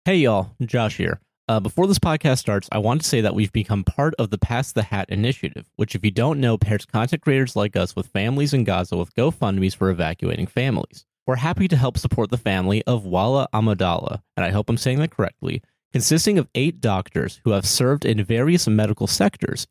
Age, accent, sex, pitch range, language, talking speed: 30-49, American, male, 105-140 Hz, English, 215 wpm